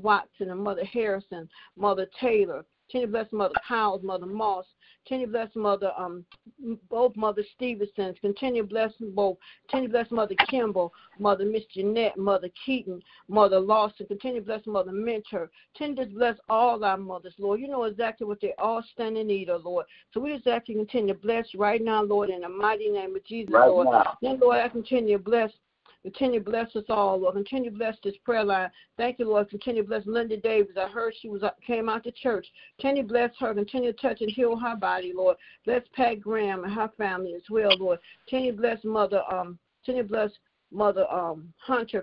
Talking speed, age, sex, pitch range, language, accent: 200 wpm, 50-69, female, 200-240 Hz, English, American